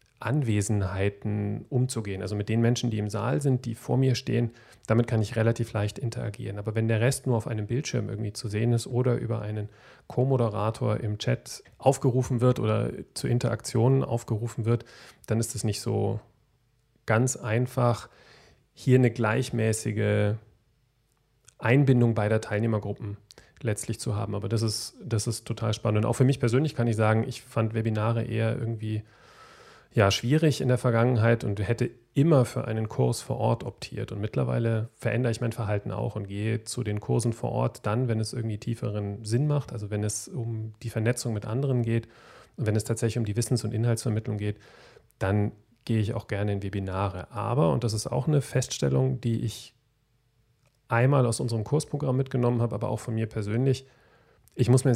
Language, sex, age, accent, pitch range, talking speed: German, male, 40-59, German, 110-120 Hz, 180 wpm